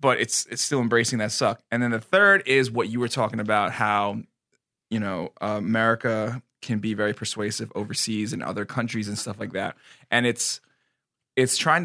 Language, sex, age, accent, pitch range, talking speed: English, male, 20-39, American, 110-140 Hz, 190 wpm